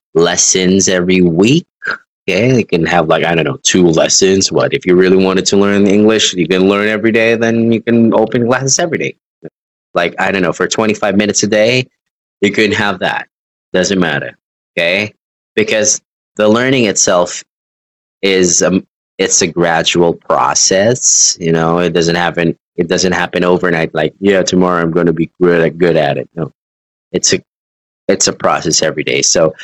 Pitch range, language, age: 80-100 Hz, Chinese, 20-39